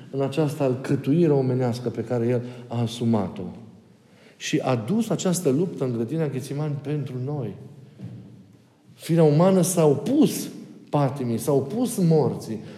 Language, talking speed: Romanian, 125 wpm